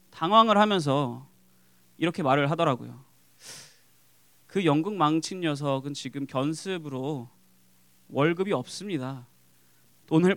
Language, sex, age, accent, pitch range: Korean, male, 20-39, native, 125-180 Hz